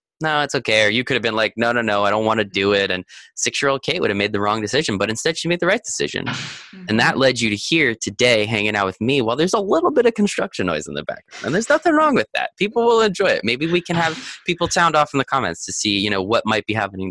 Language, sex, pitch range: English, male, 95-135 Hz